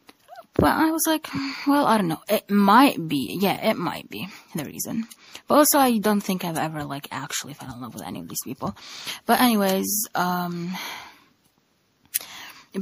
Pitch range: 170-220 Hz